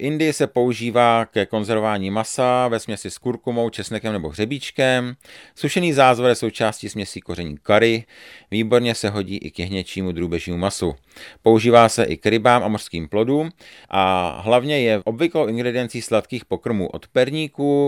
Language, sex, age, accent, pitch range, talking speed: Czech, male, 40-59, native, 100-125 Hz, 150 wpm